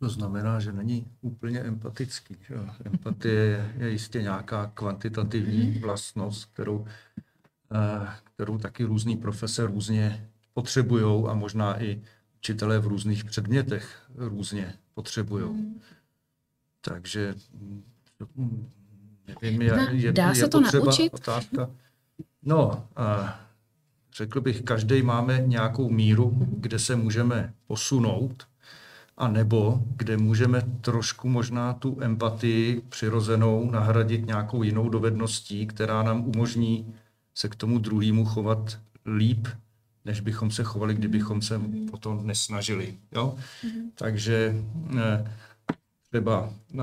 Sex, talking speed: male, 105 wpm